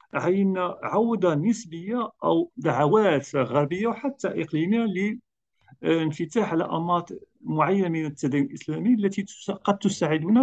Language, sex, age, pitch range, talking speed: Arabic, male, 50-69, 140-220 Hz, 110 wpm